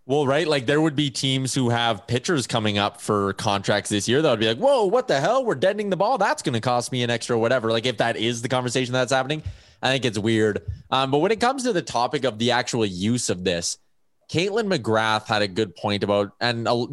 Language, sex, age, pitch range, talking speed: English, male, 20-39, 110-150 Hz, 250 wpm